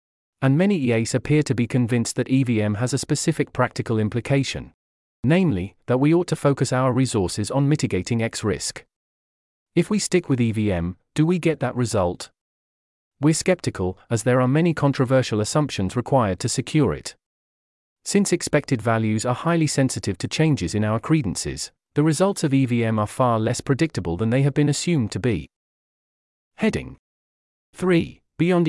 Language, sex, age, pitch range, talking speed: English, male, 30-49, 105-145 Hz, 160 wpm